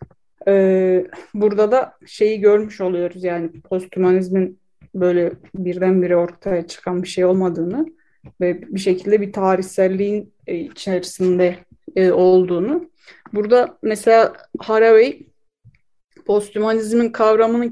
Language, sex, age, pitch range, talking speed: Turkish, female, 30-49, 185-240 Hz, 90 wpm